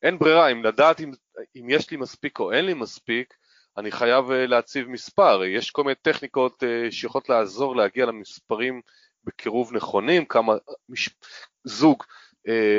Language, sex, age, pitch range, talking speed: Hebrew, male, 30-49, 115-145 Hz, 150 wpm